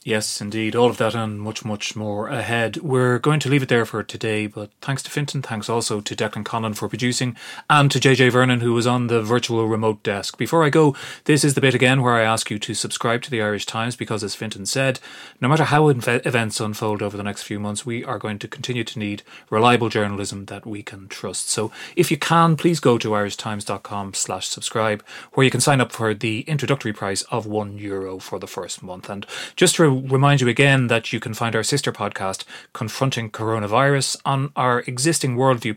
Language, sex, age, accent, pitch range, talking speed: English, male, 30-49, Irish, 105-130 Hz, 220 wpm